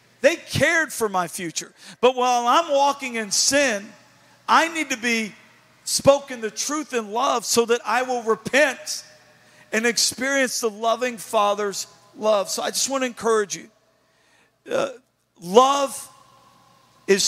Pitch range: 195-250 Hz